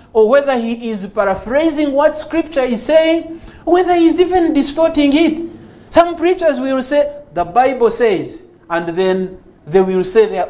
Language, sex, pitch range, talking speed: English, male, 200-295 Hz, 155 wpm